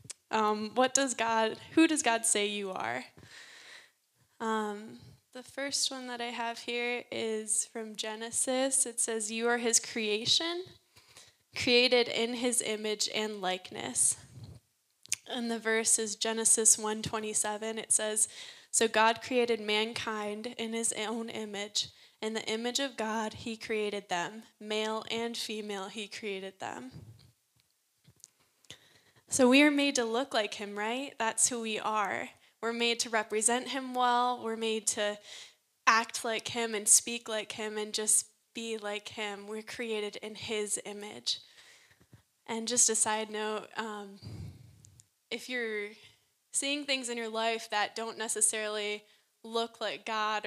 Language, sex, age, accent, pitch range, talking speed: English, female, 10-29, American, 210-235 Hz, 145 wpm